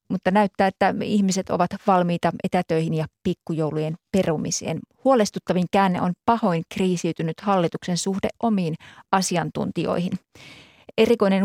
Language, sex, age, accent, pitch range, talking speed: Finnish, female, 30-49, native, 170-205 Hz, 105 wpm